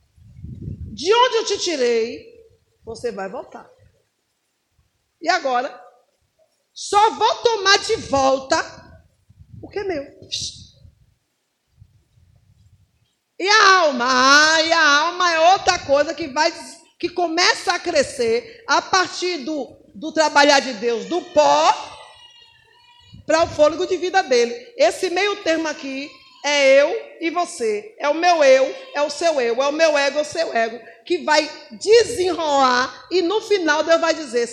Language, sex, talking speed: Portuguese, female, 145 wpm